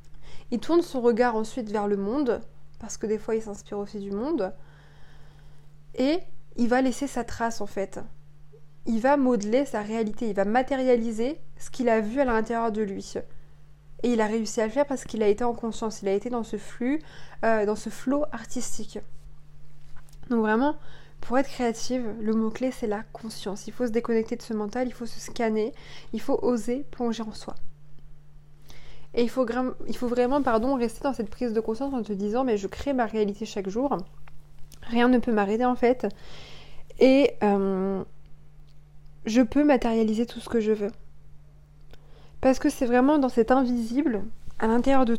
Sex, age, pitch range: female, 20-39, 190-245 Hz